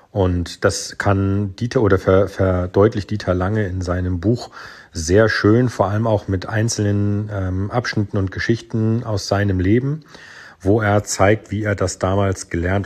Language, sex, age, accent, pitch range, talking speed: German, male, 40-59, German, 95-110 Hz, 150 wpm